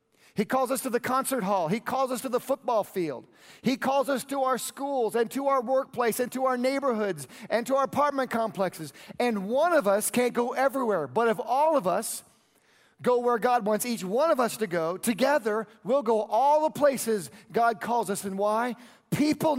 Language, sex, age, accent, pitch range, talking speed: English, male, 40-59, American, 210-260 Hz, 205 wpm